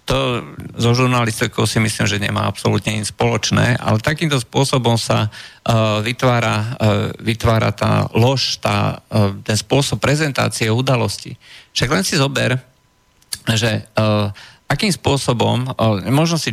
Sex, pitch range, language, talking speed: male, 110-125 Hz, Slovak, 130 wpm